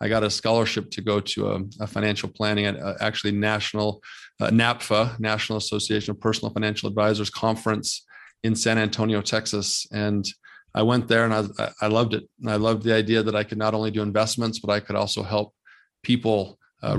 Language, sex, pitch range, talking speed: English, male, 100-110 Hz, 200 wpm